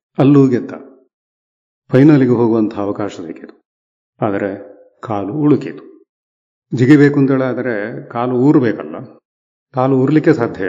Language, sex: Kannada, male